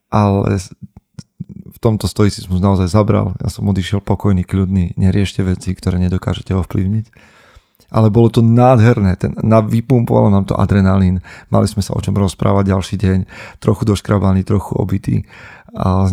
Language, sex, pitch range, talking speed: Slovak, male, 95-110 Hz, 155 wpm